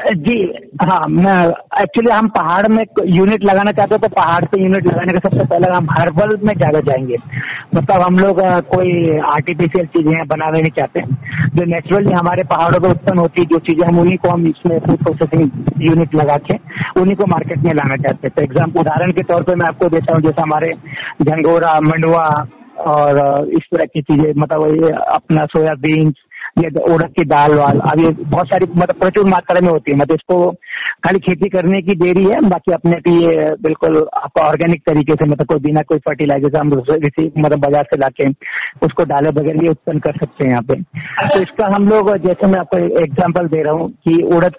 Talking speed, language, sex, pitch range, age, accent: 200 wpm, Hindi, male, 155-180 Hz, 50-69, native